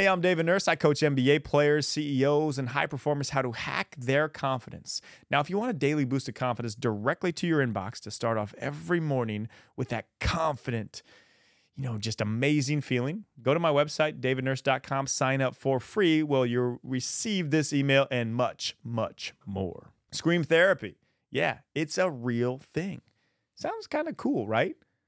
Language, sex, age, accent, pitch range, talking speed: English, male, 30-49, American, 120-155 Hz, 175 wpm